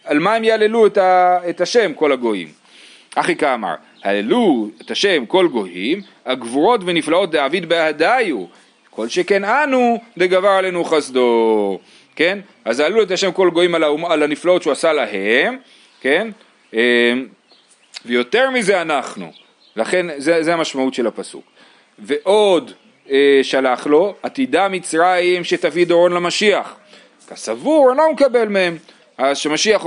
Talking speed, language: 130 wpm, Hebrew